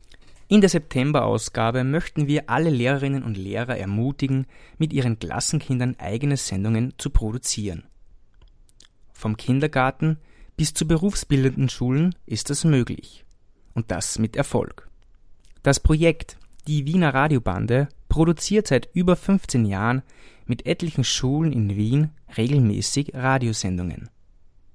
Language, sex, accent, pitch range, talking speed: German, male, German, 105-140 Hz, 115 wpm